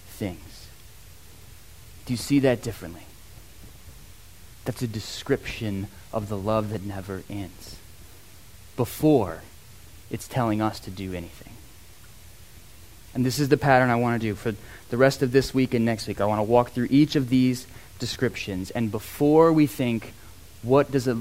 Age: 30-49